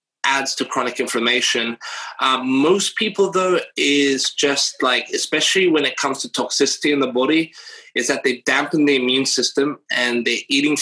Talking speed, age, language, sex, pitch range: 165 wpm, 20-39, English, male, 125-180 Hz